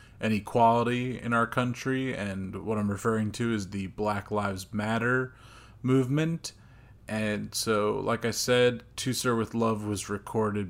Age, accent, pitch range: 30-49, American, 105-120 Hz